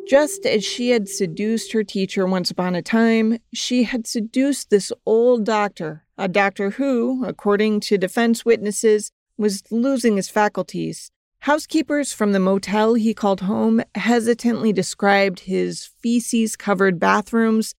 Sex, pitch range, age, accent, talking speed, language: female, 190-235 Hz, 40-59, American, 135 wpm, English